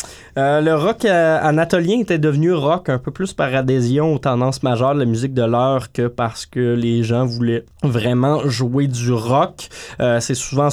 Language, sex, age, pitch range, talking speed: French, male, 20-39, 120-150 Hz, 185 wpm